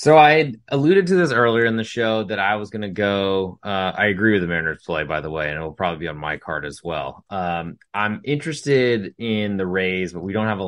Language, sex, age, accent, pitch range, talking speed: English, male, 20-39, American, 85-110 Hz, 260 wpm